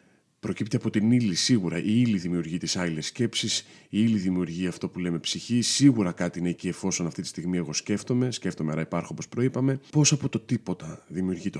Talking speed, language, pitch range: 195 wpm, Greek, 85-110 Hz